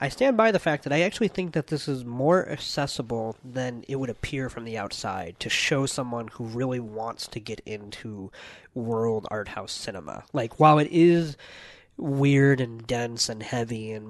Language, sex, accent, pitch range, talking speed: English, male, American, 110-140 Hz, 185 wpm